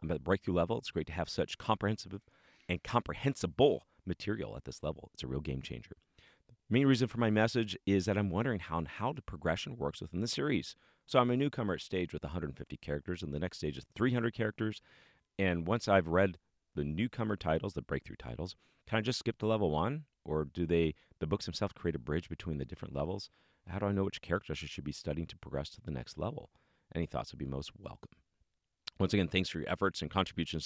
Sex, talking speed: male, 230 wpm